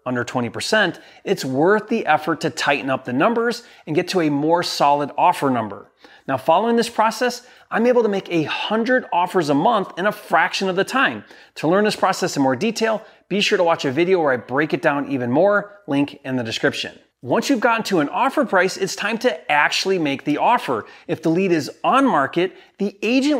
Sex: male